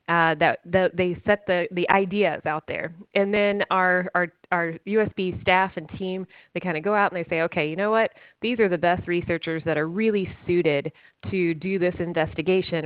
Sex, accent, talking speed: female, American, 200 wpm